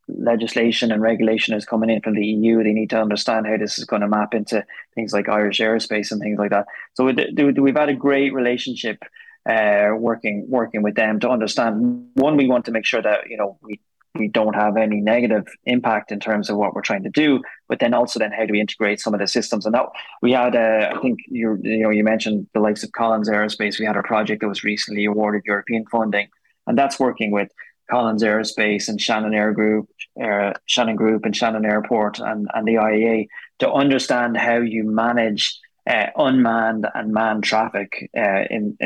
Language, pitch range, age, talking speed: English, 105-115 Hz, 20-39, 210 wpm